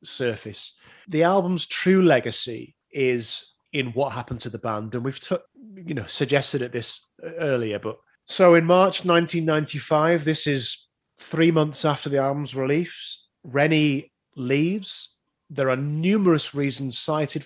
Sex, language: male, English